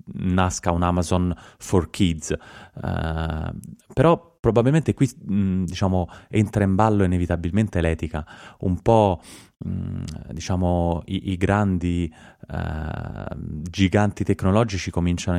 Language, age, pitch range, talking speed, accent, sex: Italian, 30-49, 85-100 Hz, 105 wpm, native, male